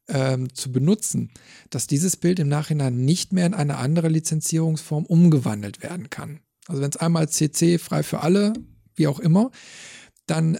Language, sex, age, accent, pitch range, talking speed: German, male, 40-59, German, 145-170 Hz, 165 wpm